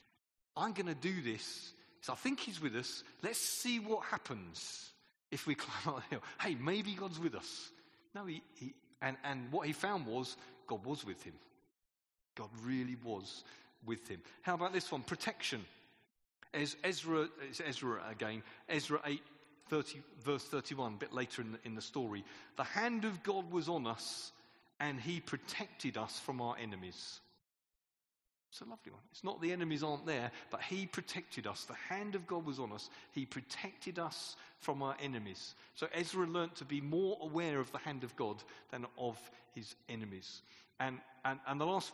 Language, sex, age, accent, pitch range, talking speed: English, male, 40-59, British, 115-165 Hz, 185 wpm